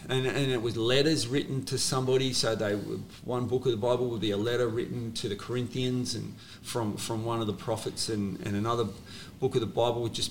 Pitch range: 105-130 Hz